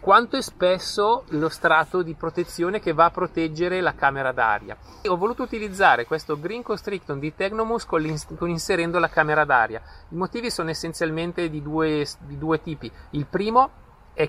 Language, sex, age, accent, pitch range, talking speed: Italian, male, 30-49, native, 150-190 Hz, 160 wpm